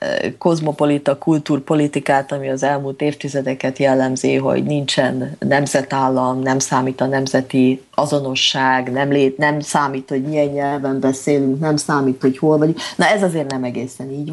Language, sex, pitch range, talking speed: Slovak, female, 130-160 Hz, 140 wpm